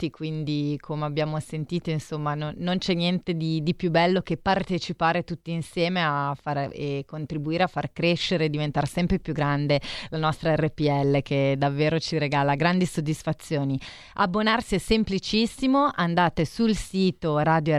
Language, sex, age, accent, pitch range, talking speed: Italian, female, 30-49, native, 150-180 Hz, 150 wpm